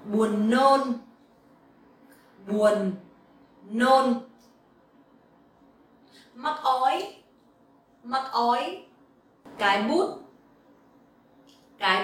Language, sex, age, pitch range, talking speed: English, female, 30-49, 220-270 Hz, 55 wpm